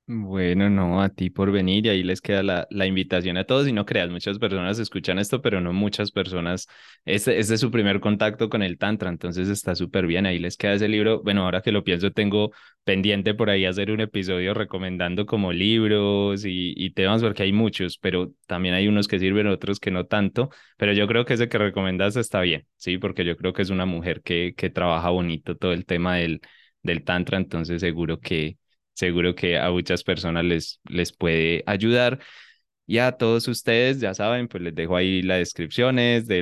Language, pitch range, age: Spanish, 90-105 Hz, 20-39